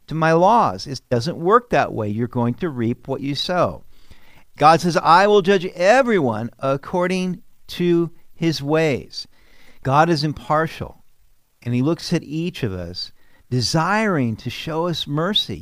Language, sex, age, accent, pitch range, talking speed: English, male, 50-69, American, 120-170 Hz, 150 wpm